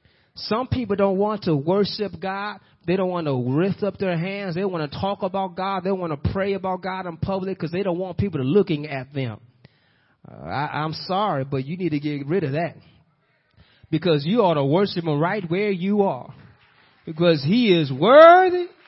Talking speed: 200 wpm